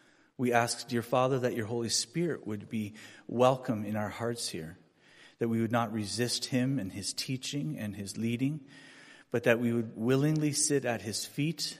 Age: 40-59